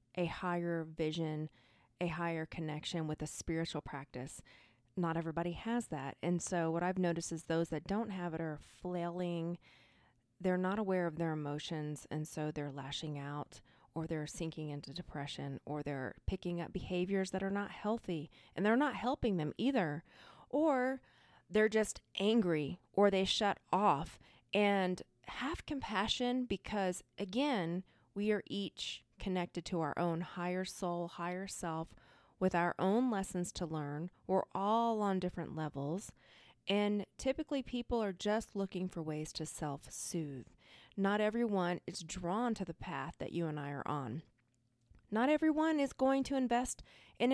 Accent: American